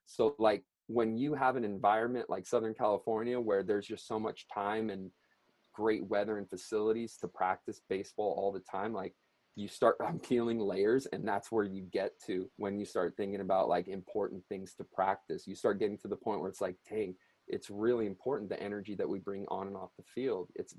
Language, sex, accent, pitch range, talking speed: English, male, American, 100-125 Hz, 210 wpm